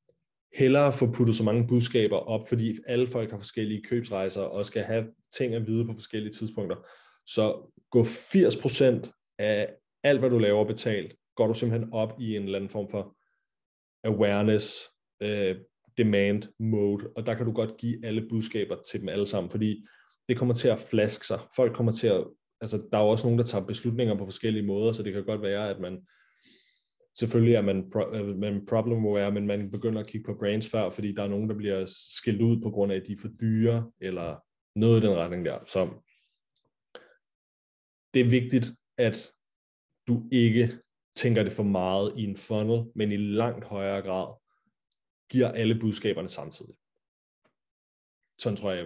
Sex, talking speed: male, 185 wpm